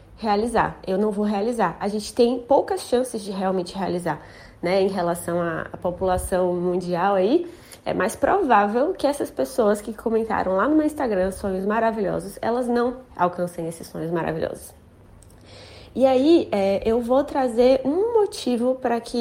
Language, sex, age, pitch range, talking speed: Portuguese, female, 20-39, 195-260 Hz, 155 wpm